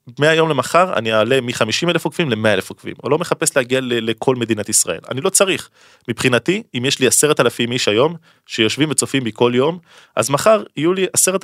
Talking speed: 200 wpm